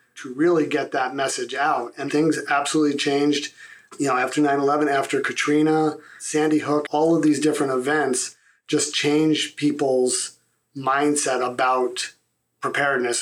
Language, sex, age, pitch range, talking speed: English, male, 40-59, 130-155 Hz, 130 wpm